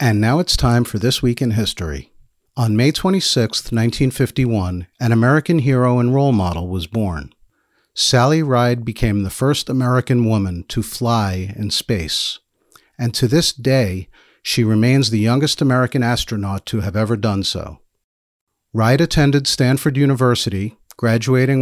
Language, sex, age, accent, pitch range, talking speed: English, male, 50-69, American, 105-135 Hz, 145 wpm